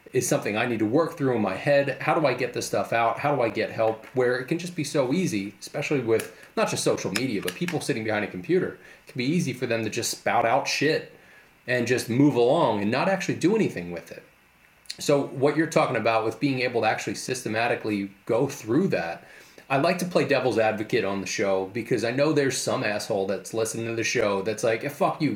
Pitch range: 110-155 Hz